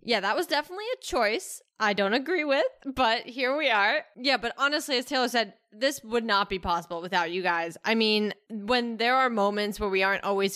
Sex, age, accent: female, 10-29, American